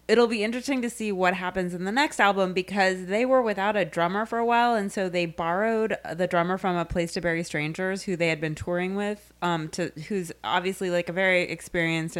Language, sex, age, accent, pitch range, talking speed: English, female, 20-39, American, 155-190 Hz, 225 wpm